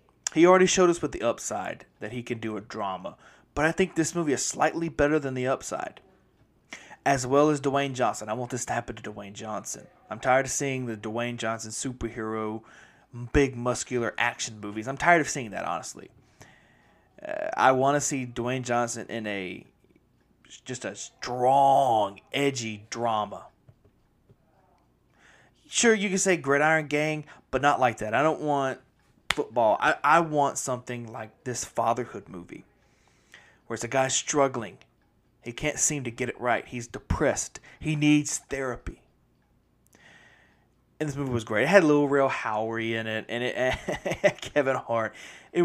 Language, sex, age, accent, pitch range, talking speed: English, male, 20-39, American, 115-145 Hz, 165 wpm